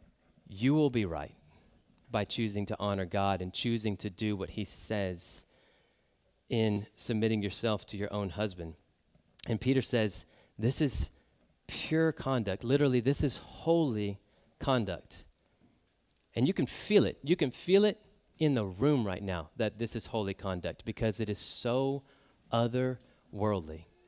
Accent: American